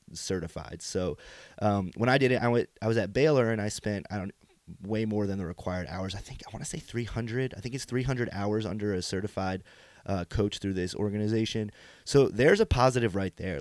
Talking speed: 220 wpm